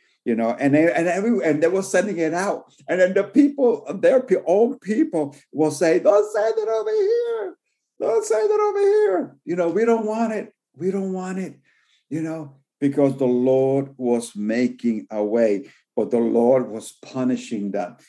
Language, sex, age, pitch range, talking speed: English, male, 50-69, 115-165 Hz, 190 wpm